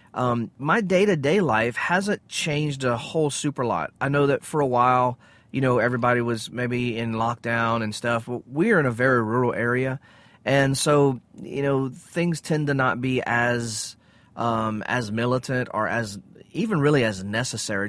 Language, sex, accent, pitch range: English, male, American, 115-140 Hz